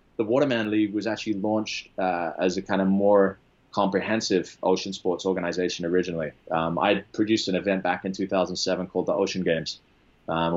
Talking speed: 180 wpm